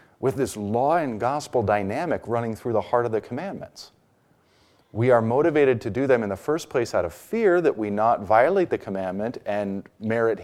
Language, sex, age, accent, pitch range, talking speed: English, male, 40-59, American, 105-135 Hz, 195 wpm